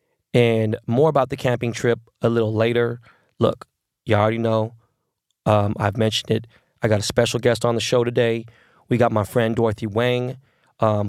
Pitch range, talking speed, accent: 115-135 Hz, 180 wpm, American